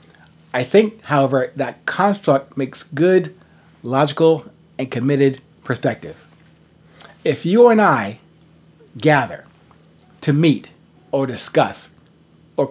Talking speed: 100 wpm